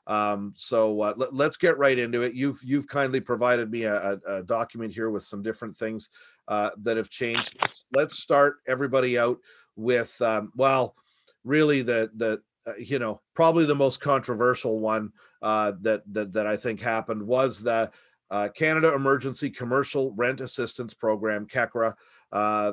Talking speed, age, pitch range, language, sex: 170 wpm, 40-59, 110-135 Hz, English, male